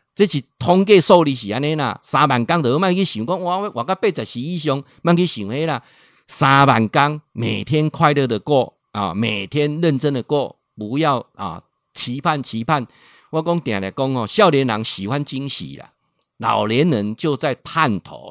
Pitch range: 135-220 Hz